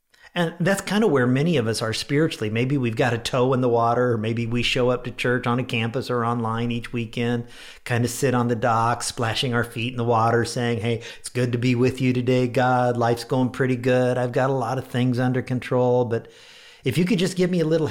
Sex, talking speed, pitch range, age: male, 250 wpm, 120-155 Hz, 50-69